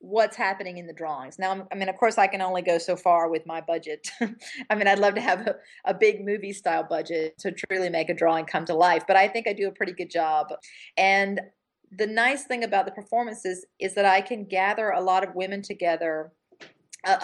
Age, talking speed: 40-59, 230 wpm